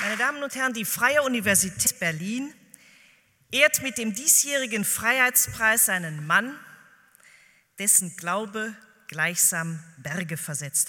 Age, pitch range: 40-59, 170-230 Hz